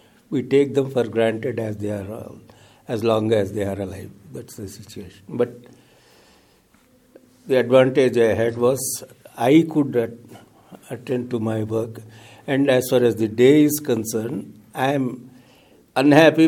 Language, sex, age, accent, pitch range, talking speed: English, male, 60-79, Indian, 110-130 Hz, 150 wpm